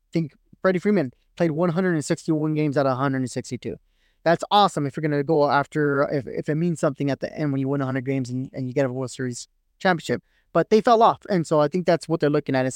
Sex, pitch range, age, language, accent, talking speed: male, 135-190 Hz, 20-39, English, American, 240 wpm